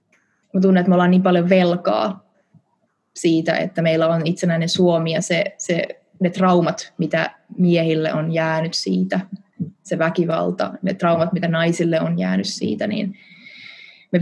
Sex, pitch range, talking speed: female, 170-195 Hz, 140 wpm